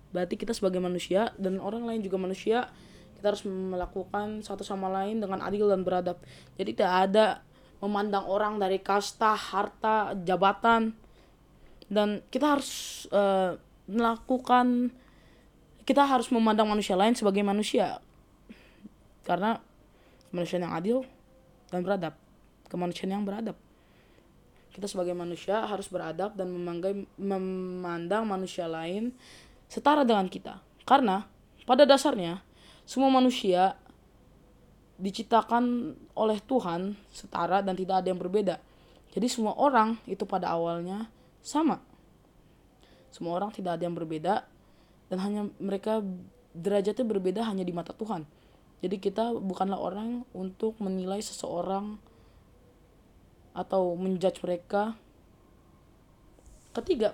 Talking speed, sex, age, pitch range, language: 115 wpm, female, 20-39, 180-220 Hz, Indonesian